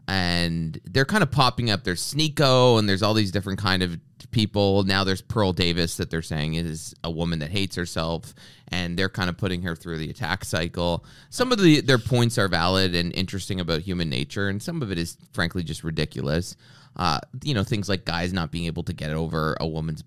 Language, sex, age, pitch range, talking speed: English, male, 20-39, 85-105 Hz, 220 wpm